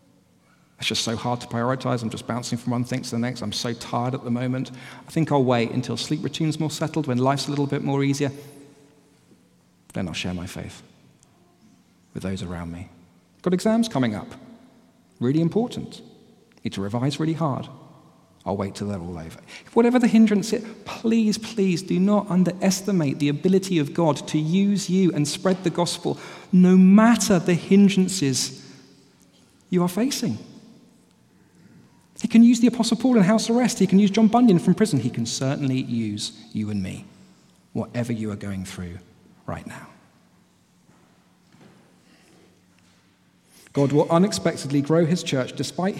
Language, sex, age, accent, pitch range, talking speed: English, male, 40-59, British, 120-195 Hz, 165 wpm